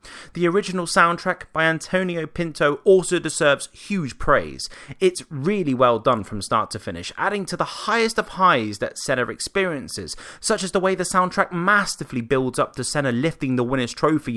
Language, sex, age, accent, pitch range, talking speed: English, male, 30-49, British, 120-185 Hz, 175 wpm